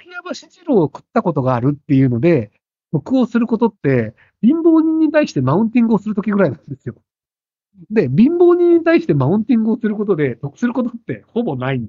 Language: Japanese